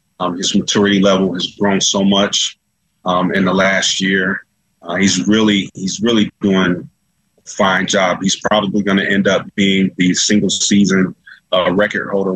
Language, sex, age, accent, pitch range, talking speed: English, male, 30-49, American, 90-100 Hz, 165 wpm